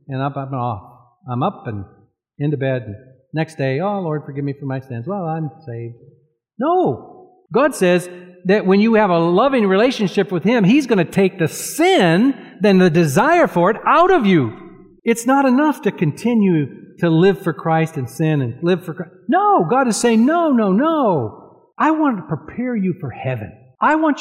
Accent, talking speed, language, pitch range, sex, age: American, 190 wpm, English, 130-200 Hz, male, 50-69